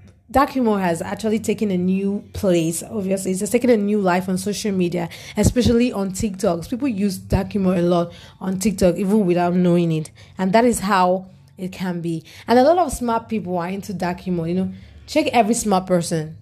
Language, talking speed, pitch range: English, 205 wpm, 180-215 Hz